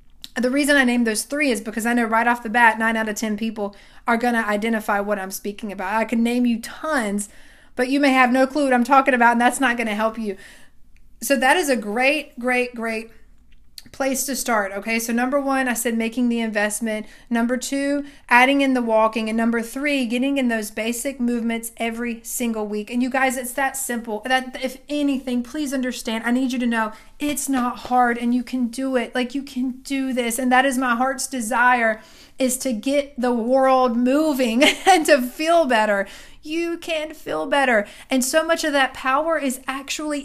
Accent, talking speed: American, 210 wpm